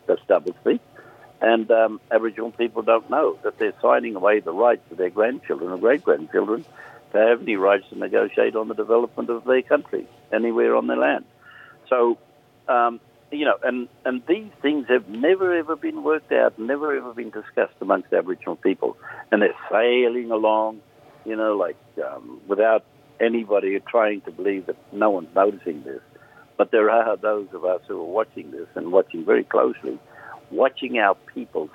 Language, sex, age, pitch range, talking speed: English, male, 60-79, 105-165 Hz, 170 wpm